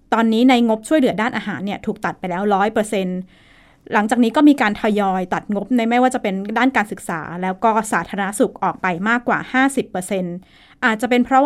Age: 20-39